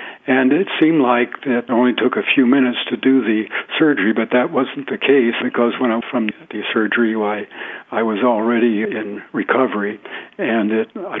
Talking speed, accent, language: 180 wpm, American, English